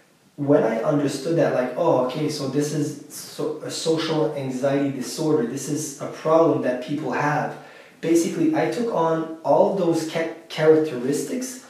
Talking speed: 155 wpm